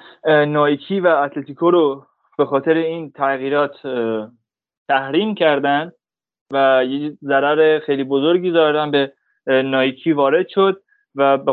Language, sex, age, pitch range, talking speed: Persian, male, 20-39, 135-160 Hz, 115 wpm